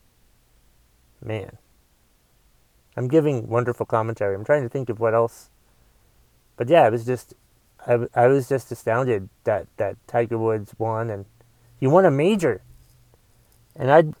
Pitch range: 115-145 Hz